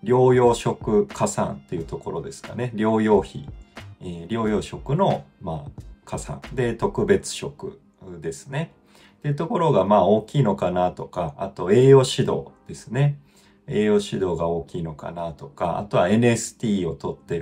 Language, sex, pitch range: Japanese, male, 90-140 Hz